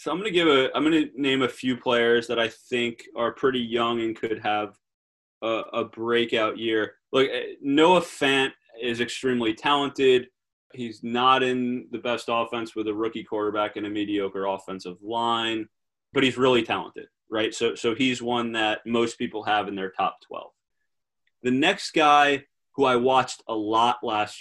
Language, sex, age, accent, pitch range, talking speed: English, male, 20-39, American, 110-130 Hz, 180 wpm